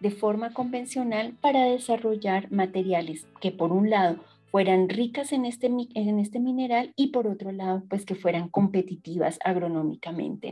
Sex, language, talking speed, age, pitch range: female, Spanish, 150 wpm, 40-59, 180-225 Hz